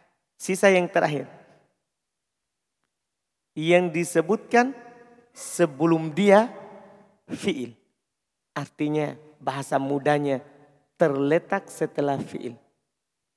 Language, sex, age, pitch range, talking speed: Indonesian, male, 40-59, 160-225 Hz, 65 wpm